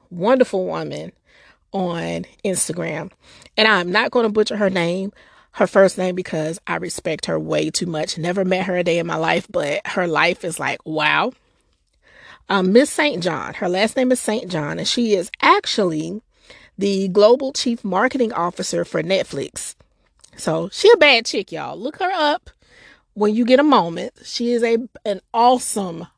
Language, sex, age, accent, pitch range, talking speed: English, female, 30-49, American, 180-270 Hz, 175 wpm